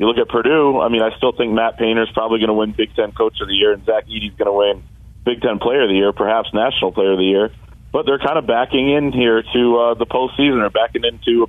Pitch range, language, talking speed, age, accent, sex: 105-125 Hz, English, 280 wpm, 30-49, American, male